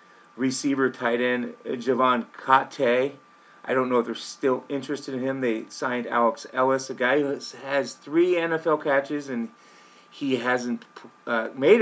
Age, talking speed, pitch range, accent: 40-59, 155 wpm, 120-145 Hz, American